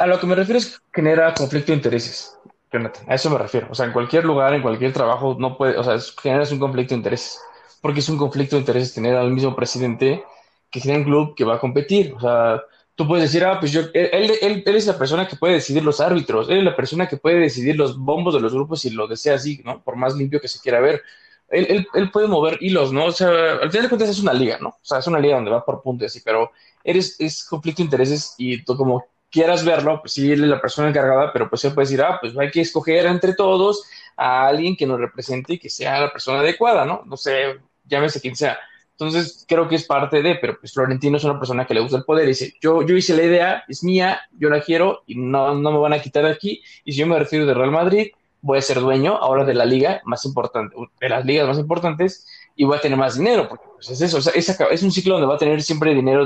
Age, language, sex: 20-39, Spanish, male